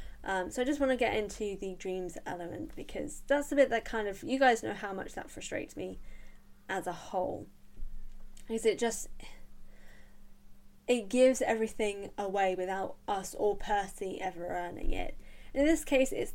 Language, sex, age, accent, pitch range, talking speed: English, female, 10-29, British, 200-270 Hz, 175 wpm